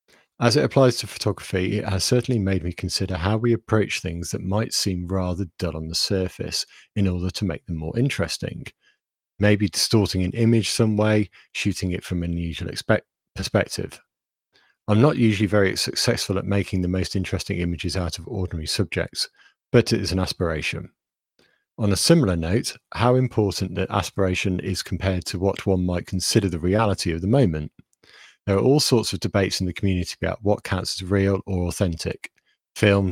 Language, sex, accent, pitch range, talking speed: English, male, British, 90-110 Hz, 180 wpm